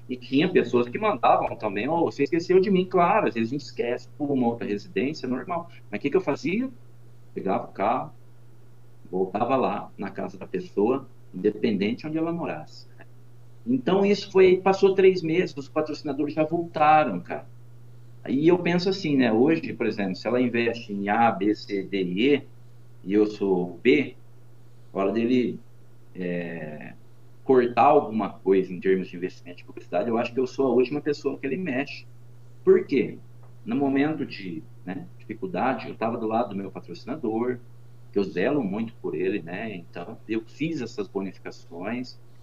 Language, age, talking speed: Portuguese, 50-69, 175 wpm